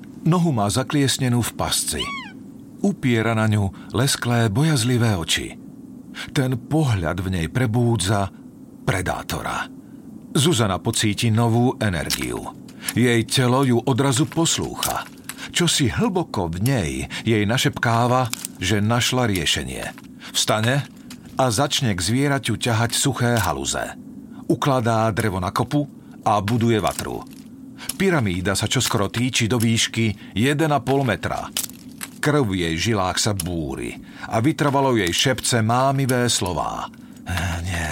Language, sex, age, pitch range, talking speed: Slovak, male, 50-69, 110-145 Hz, 110 wpm